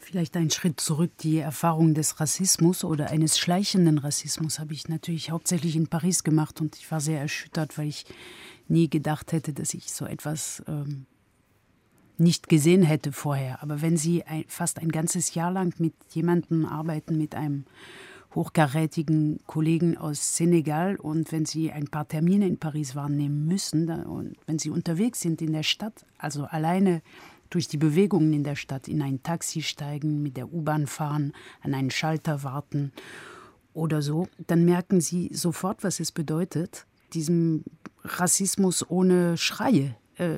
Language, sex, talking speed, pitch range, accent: German, female, 160 wpm, 150-170 Hz, German